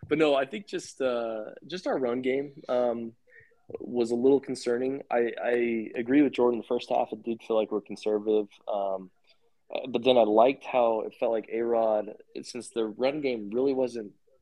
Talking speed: 190 wpm